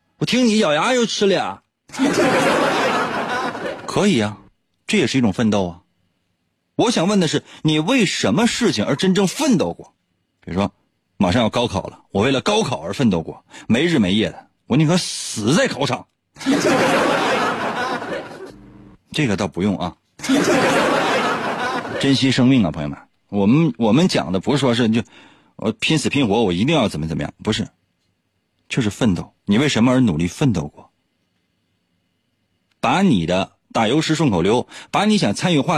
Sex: male